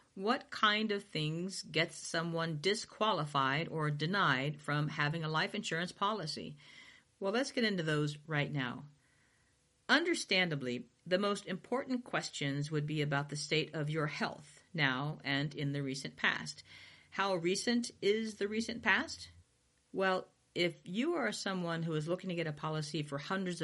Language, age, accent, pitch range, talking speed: English, 50-69, American, 145-190 Hz, 155 wpm